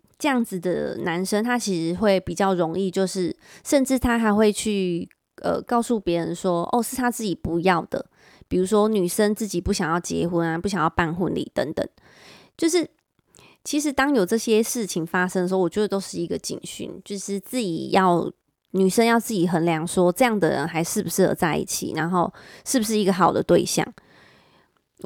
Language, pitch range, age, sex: Chinese, 175-220 Hz, 20-39, female